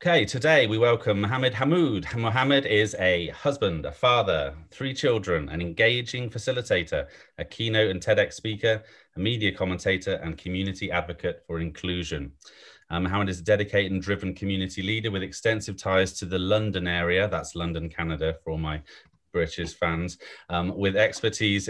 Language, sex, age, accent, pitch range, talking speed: English, male, 30-49, British, 85-105 Hz, 160 wpm